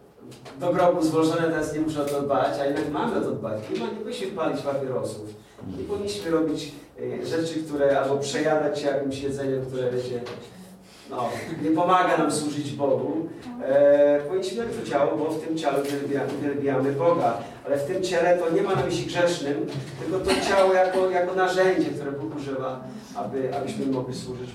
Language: Polish